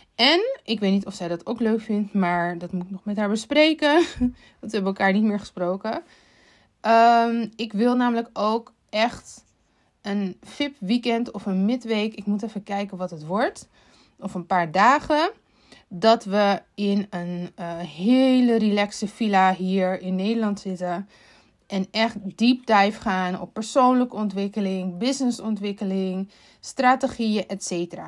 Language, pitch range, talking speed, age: Dutch, 195-255 Hz, 150 wpm, 20-39